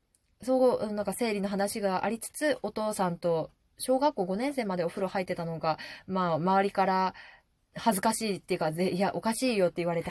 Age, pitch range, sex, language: 20-39, 175-245 Hz, female, Japanese